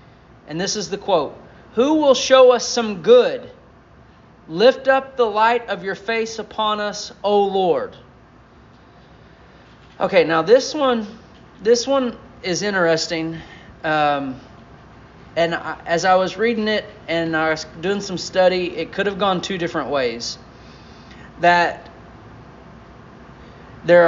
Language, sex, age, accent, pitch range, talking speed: English, male, 30-49, American, 150-200 Hz, 130 wpm